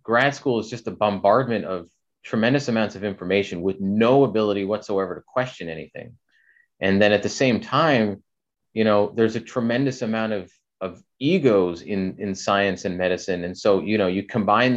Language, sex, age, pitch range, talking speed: English, male, 30-49, 95-110 Hz, 180 wpm